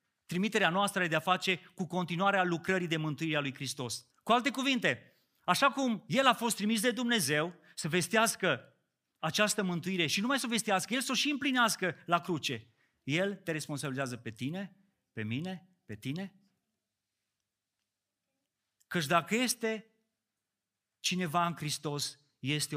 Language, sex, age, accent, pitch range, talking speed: Romanian, male, 30-49, native, 135-195 Hz, 145 wpm